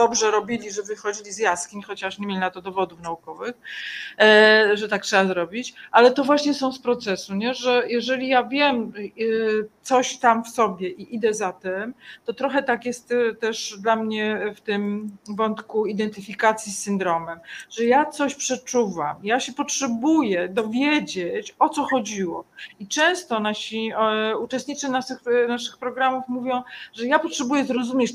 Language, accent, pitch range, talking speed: Polish, native, 215-270 Hz, 150 wpm